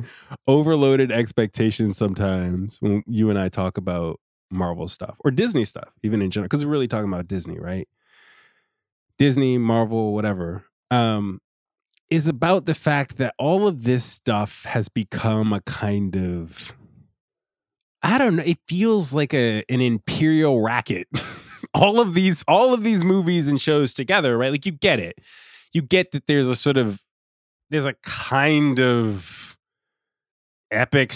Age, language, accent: 20-39, English, American